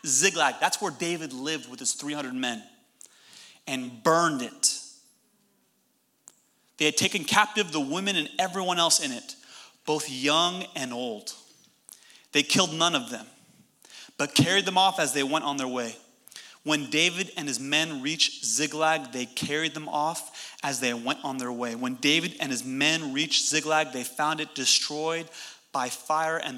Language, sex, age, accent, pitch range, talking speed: English, male, 30-49, American, 125-155 Hz, 165 wpm